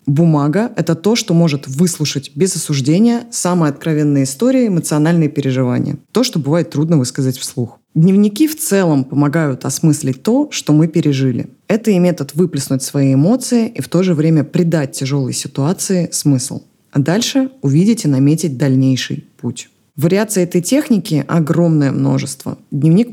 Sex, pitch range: female, 135-175 Hz